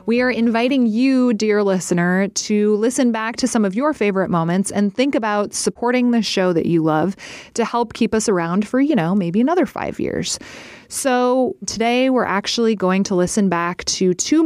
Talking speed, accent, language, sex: 190 wpm, American, English, female